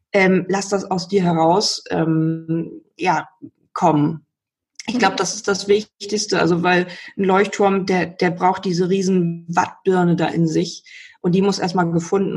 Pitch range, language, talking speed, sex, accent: 170-200 Hz, German, 160 wpm, female, German